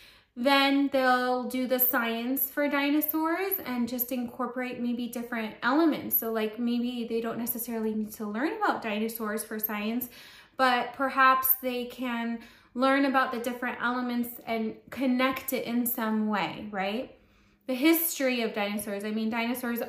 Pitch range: 225-280 Hz